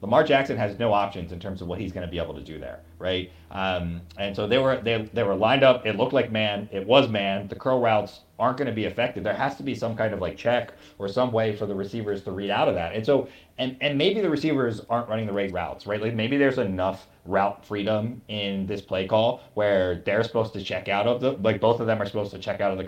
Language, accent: English, American